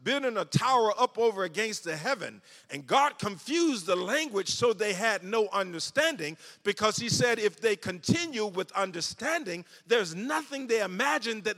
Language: English